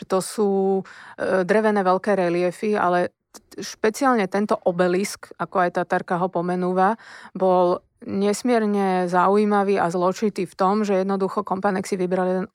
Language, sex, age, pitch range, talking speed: Slovak, female, 30-49, 185-210 Hz, 135 wpm